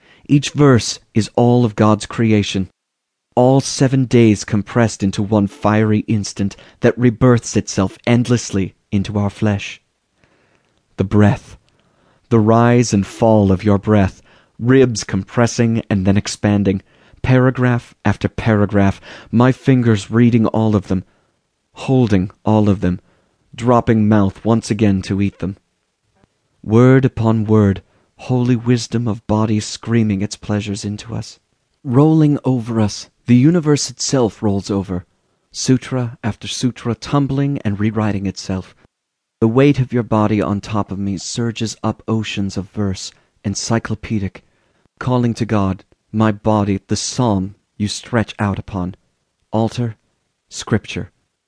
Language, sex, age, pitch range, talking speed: English, male, 30-49, 100-120 Hz, 130 wpm